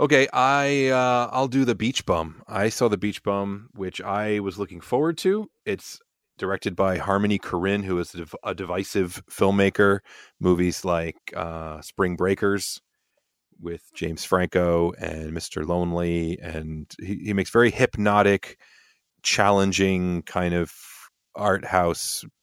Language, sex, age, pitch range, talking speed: English, male, 30-49, 90-115 Hz, 140 wpm